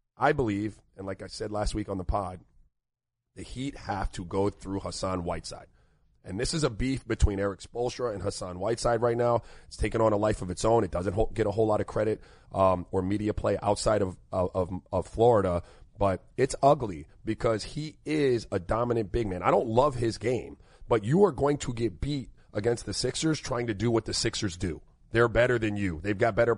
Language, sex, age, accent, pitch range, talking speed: English, male, 30-49, American, 100-120 Hz, 215 wpm